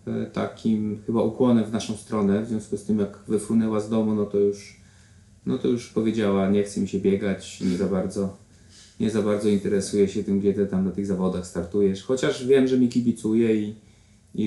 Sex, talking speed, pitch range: male, 200 wpm, 100-120 Hz